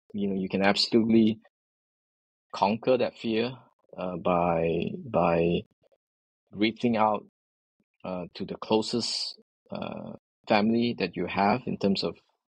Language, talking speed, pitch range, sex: English, 120 wpm, 95-115 Hz, male